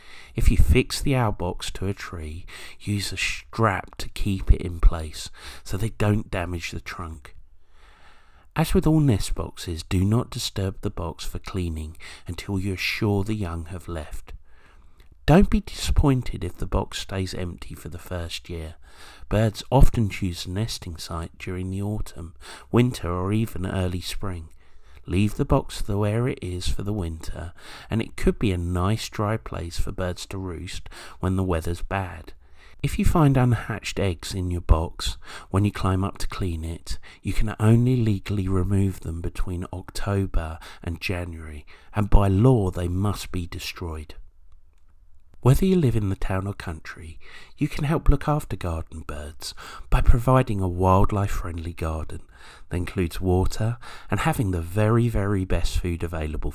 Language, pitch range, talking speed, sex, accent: English, 85-105 Hz, 170 wpm, male, British